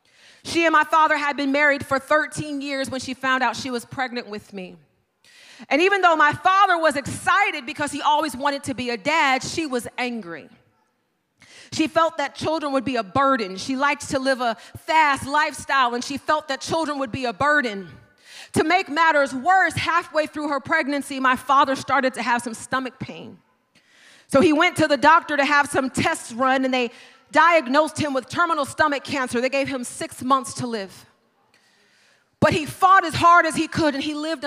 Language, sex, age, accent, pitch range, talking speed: English, female, 40-59, American, 265-325 Hz, 200 wpm